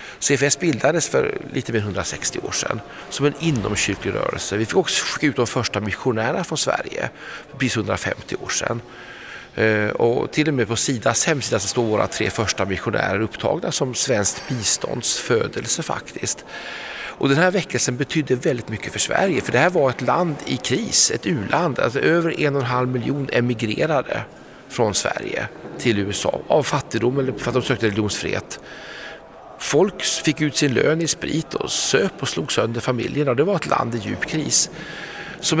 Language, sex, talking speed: Swedish, male, 175 wpm